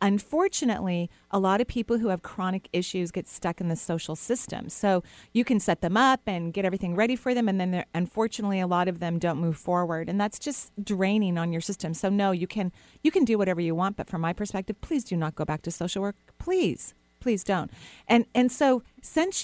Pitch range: 175-230 Hz